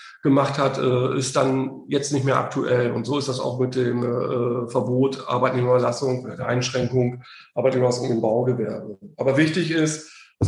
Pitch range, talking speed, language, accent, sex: 135-160 Hz, 145 wpm, German, German, male